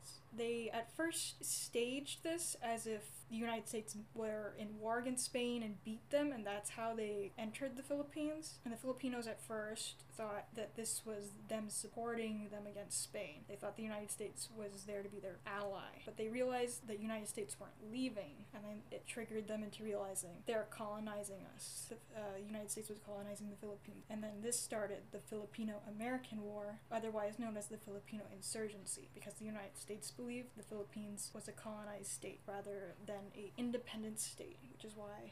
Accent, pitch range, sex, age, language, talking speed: American, 205-230 Hz, female, 10-29, English, 185 wpm